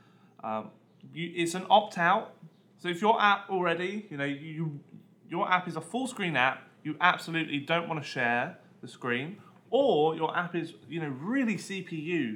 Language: English